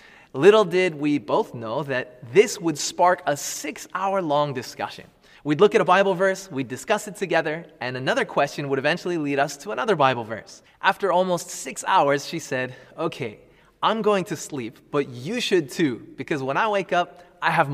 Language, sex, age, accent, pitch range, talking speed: English, male, 20-39, American, 130-175 Hz, 195 wpm